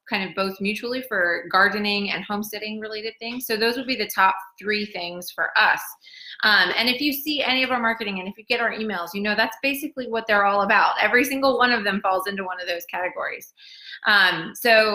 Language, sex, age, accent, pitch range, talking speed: English, female, 20-39, American, 180-230 Hz, 225 wpm